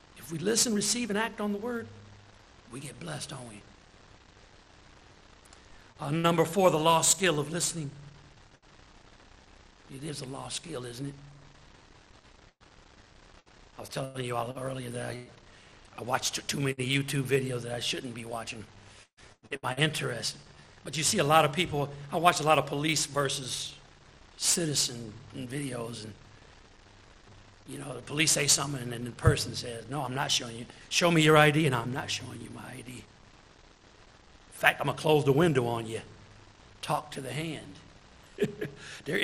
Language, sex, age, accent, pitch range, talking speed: English, male, 60-79, American, 115-160 Hz, 170 wpm